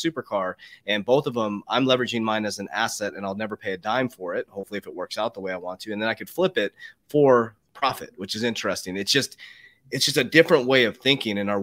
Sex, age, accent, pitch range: male, 30-49, American, 105-135 Hz